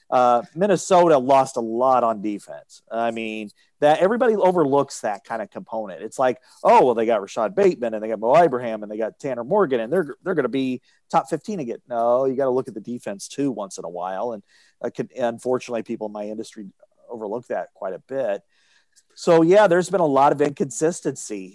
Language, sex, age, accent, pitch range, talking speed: English, male, 40-59, American, 120-165 Hz, 210 wpm